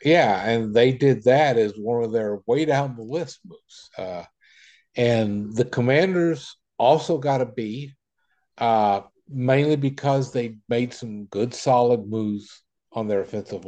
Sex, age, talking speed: male, 50-69, 150 wpm